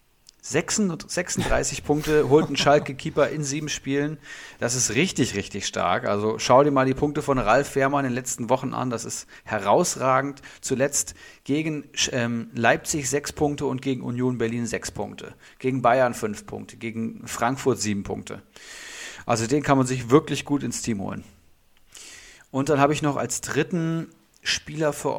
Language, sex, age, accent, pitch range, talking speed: German, male, 40-59, German, 115-140 Hz, 165 wpm